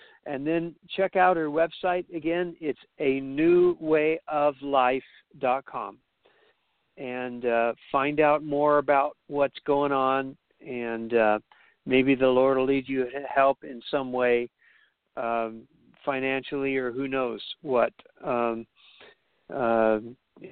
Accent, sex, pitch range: American, male, 125-160 Hz